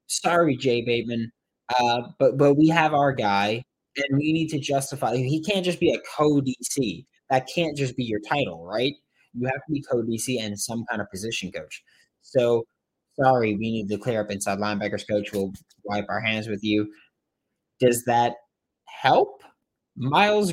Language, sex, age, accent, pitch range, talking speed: English, male, 20-39, American, 110-155 Hz, 175 wpm